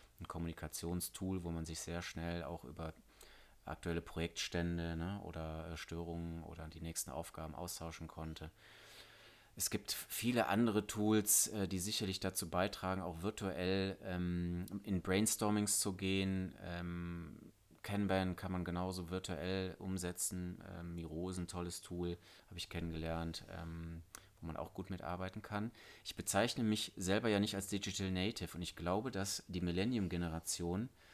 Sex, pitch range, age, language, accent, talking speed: male, 85-95 Hz, 30-49, German, German, 145 wpm